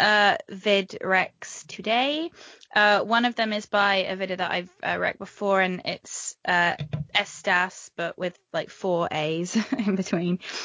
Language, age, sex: English, 20-39, female